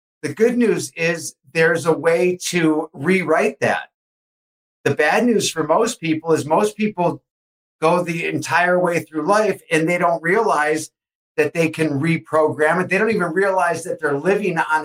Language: English